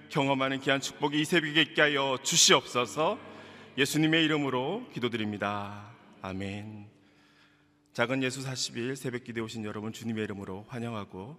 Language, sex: Korean, male